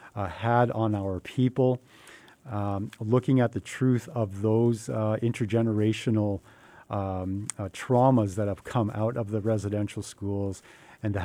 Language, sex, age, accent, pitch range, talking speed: English, male, 50-69, American, 100-115 Hz, 145 wpm